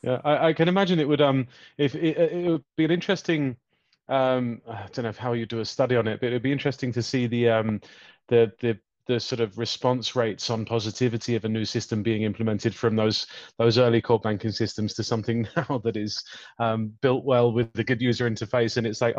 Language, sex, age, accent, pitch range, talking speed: English, male, 30-49, British, 110-135 Hz, 230 wpm